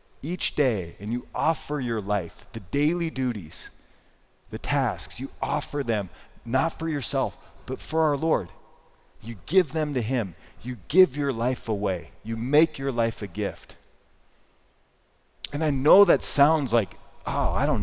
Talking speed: 160 wpm